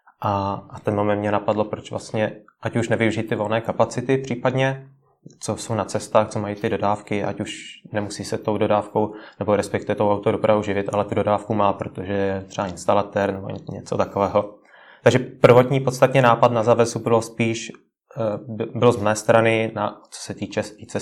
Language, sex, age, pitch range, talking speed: Czech, male, 20-39, 100-110 Hz, 170 wpm